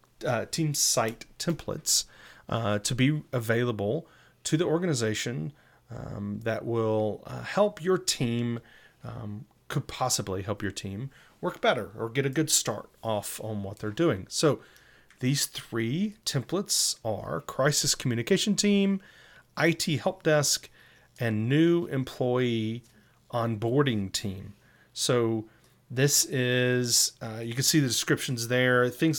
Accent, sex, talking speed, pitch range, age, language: American, male, 130 wpm, 105-145 Hz, 30-49, English